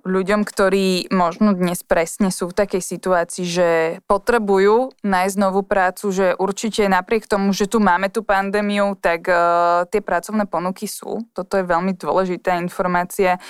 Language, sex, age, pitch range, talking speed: Slovak, female, 20-39, 180-210 Hz, 150 wpm